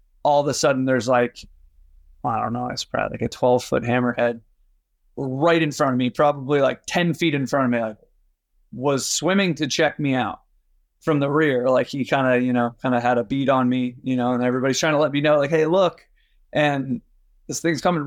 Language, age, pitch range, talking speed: English, 30-49, 125-155 Hz, 225 wpm